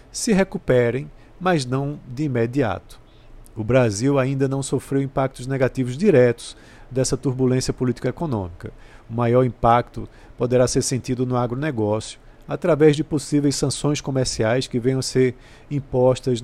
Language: Portuguese